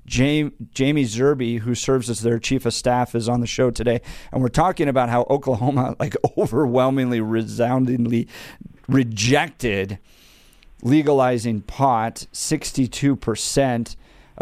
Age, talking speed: 50-69, 110 wpm